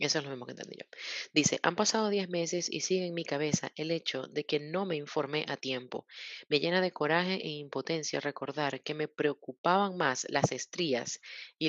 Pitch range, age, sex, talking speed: 140-175 Hz, 30-49, female, 205 wpm